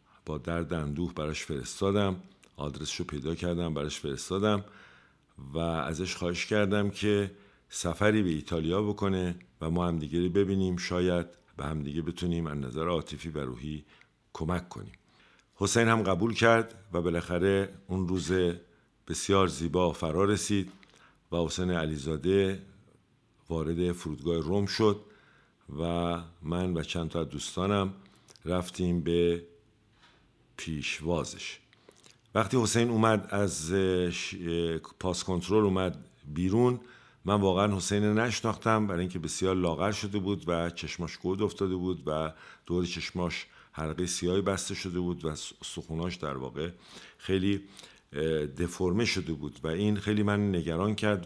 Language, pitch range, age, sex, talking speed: Persian, 80-100 Hz, 50-69, male, 125 wpm